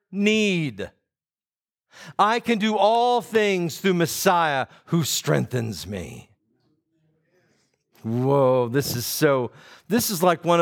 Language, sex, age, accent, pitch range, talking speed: English, male, 50-69, American, 135-205 Hz, 105 wpm